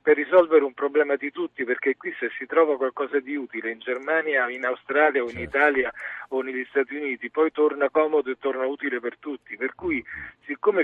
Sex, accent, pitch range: male, native, 130-160 Hz